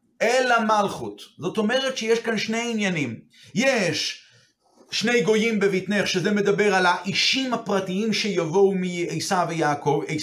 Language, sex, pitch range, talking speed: Hebrew, male, 165-225 Hz, 115 wpm